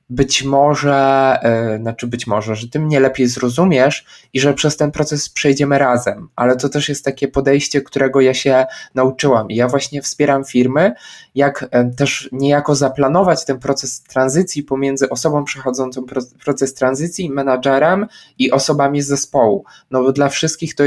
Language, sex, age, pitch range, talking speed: Polish, male, 20-39, 125-150 Hz, 155 wpm